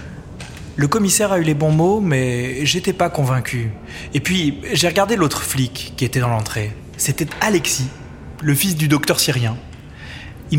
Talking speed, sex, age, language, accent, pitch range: 165 wpm, male, 20-39, French, French, 125-185 Hz